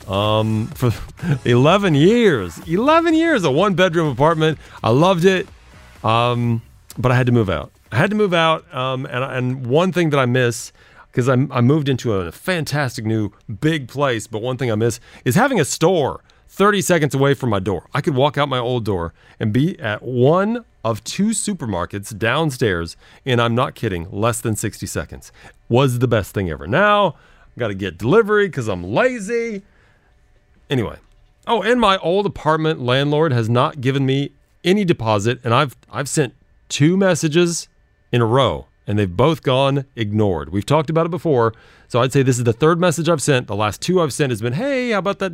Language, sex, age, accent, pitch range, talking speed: English, male, 40-59, American, 115-165 Hz, 195 wpm